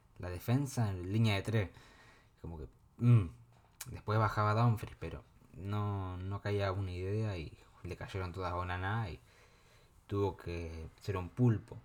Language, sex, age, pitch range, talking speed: Spanish, male, 20-39, 95-115 Hz, 150 wpm